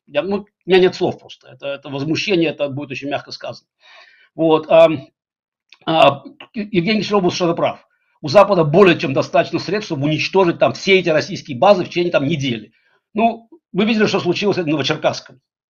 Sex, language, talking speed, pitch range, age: male, Russian, 175 wpm, 155-195 Hz, 60-79